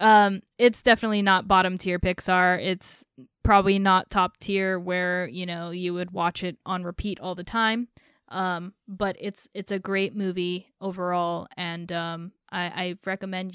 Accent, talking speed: American, 155 wpm